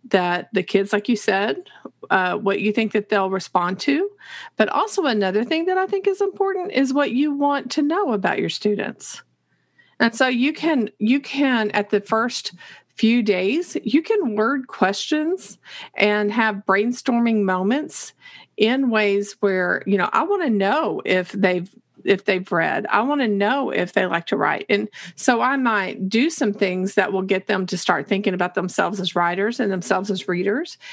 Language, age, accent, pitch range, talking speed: English, 40-59, American, 195-255 Hz, 185 wpm